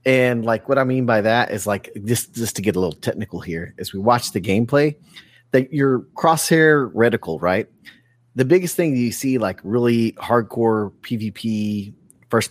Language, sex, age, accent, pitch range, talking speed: English, male, 30-49, American, 110-140 Hz, 185 wpm